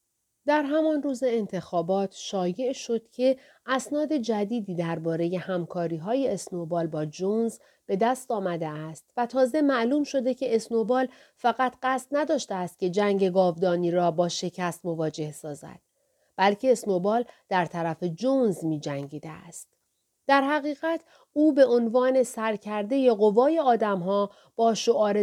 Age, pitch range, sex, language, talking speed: 40-59, 180-255 Hz, female, Persian, 130 wpm